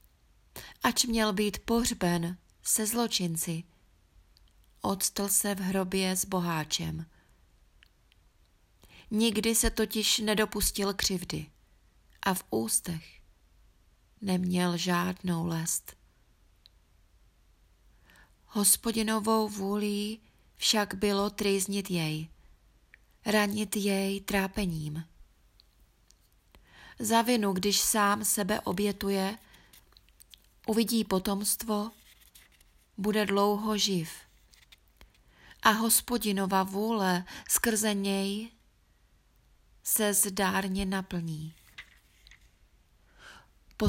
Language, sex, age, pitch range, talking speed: Czech, female, 30-49, 165-210 Hz, 70 wpm